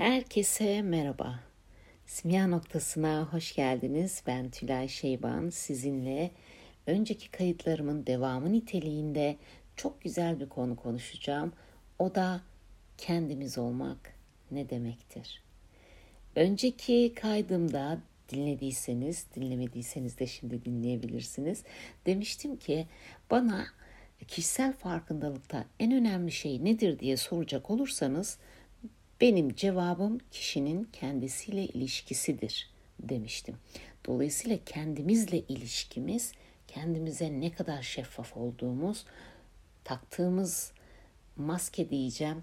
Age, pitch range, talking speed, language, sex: 60-79, 125-180 Hz, 85 wpm, Turkish, female